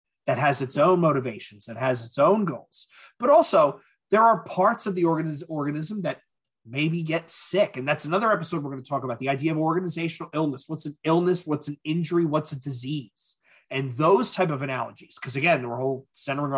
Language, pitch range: English, 140-185 Hz